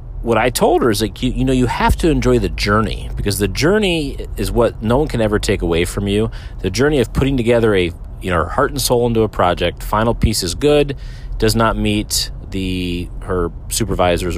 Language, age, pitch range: English, 40-59, 85-115 Hz